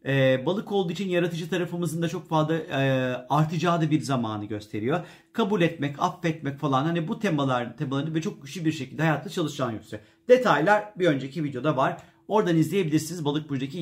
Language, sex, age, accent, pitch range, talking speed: Turkish, male, 40-59, native, 140-190 Hz, 180 wpm